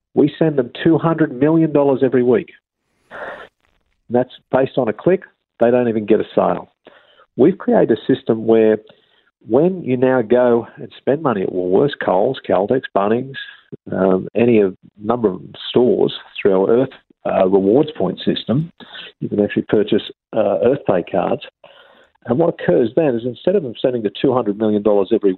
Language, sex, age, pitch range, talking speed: English, male, 50-69, 110-140 Hz, 165 wpm